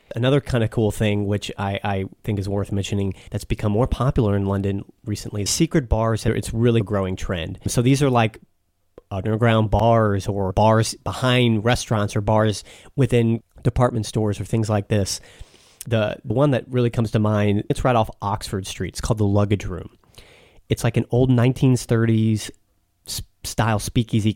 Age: 30-49